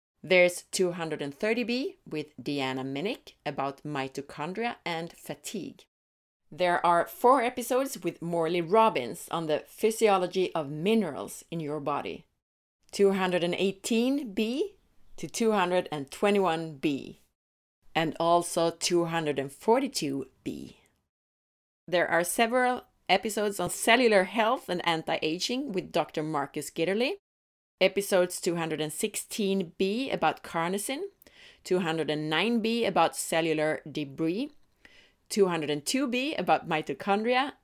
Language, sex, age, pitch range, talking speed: Swedish, female, 30-49, 155-205 Hz, 85 wpm